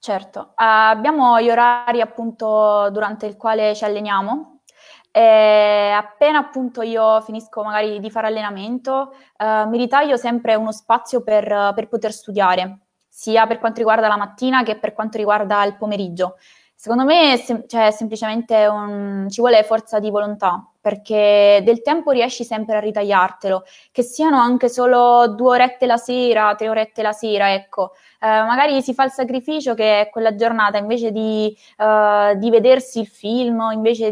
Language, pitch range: Italian, 205-235 Hz